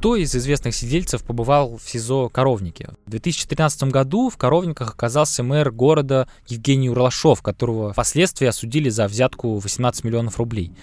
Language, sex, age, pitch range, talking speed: Russian, male, 20-39, 110-135 Hz, 145 wpm